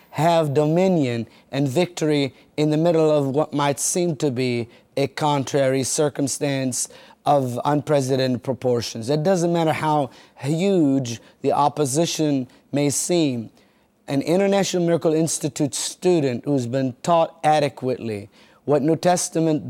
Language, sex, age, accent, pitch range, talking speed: English, male, 30-49, American, 130-165 Hz, 120 wpm